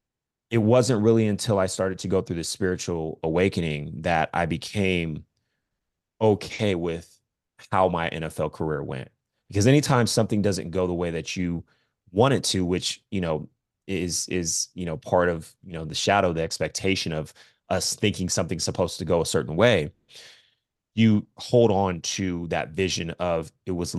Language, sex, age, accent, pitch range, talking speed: English, male, 30-49, American, 85-100 Hz, 170 wpm